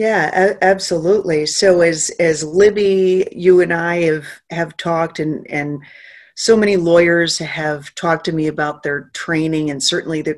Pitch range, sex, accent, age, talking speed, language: 155-185 Hz, female, American, 40-59, 155 wpm, English